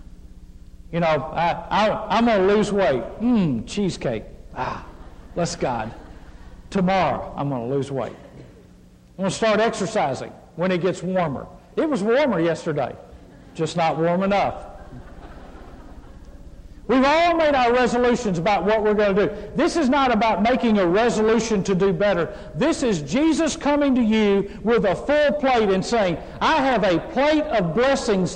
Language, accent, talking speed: English, American, 160 wpm